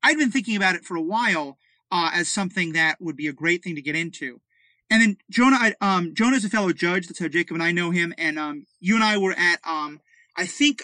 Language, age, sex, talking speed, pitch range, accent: English, 30-49, male, 255 wpm, 165-210 Hz, American